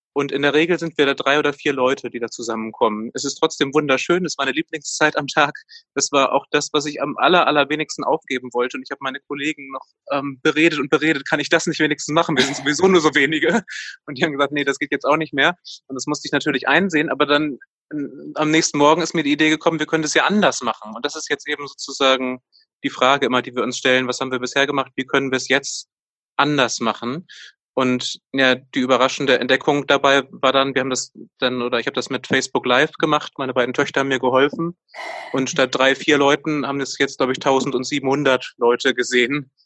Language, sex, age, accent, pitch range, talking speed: German, male, 20-39, German, 130-150 Hz, 235 wpm